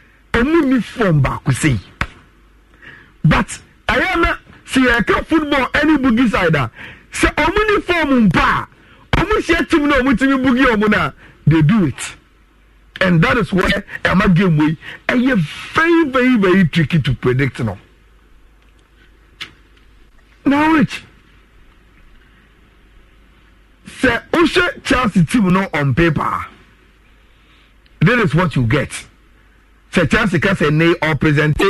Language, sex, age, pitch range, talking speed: English, male, 50-69, 155-240 Hz, 130 wpm